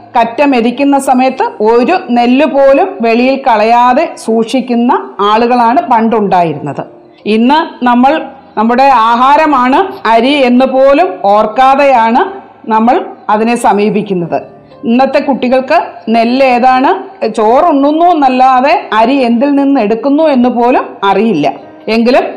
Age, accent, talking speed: 40-59, native, 95 wpm